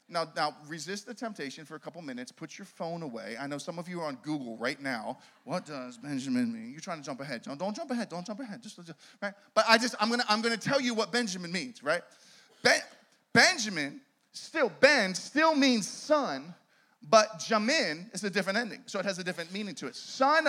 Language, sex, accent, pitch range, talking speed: English, male, American, 185-260 Hz, 230 wpm